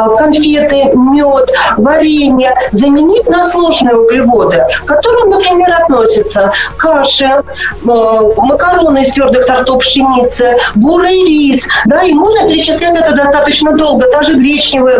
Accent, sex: native, female